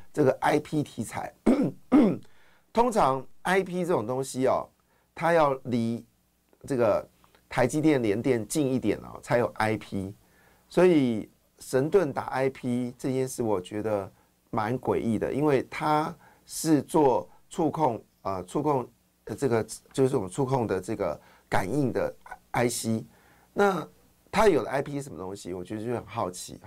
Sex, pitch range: male, 110-150 Hz